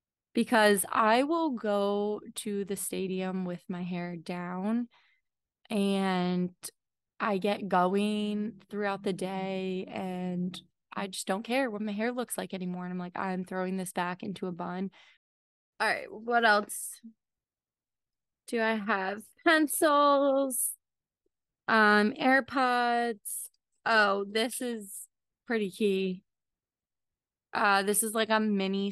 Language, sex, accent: English, female, American